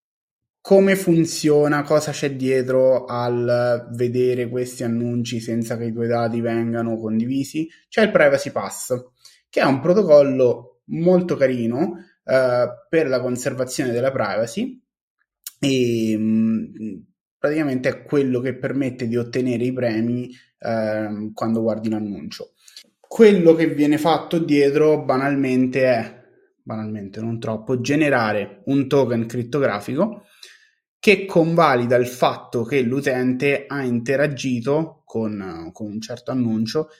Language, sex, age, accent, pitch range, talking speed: Italian, male, 20-39, native, 120-155 Hz, 120 wpm